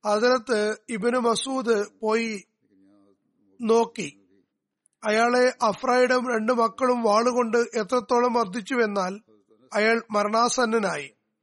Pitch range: 205-240 Hz